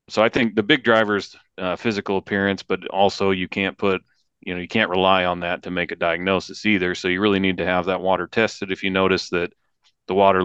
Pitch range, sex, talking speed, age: 90-100 Hz, male, 235 wpm, 30-49